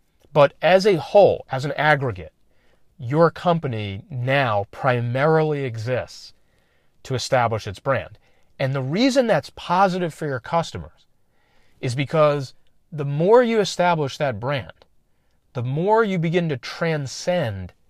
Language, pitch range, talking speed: English, 120-160 Hz, 125 wpm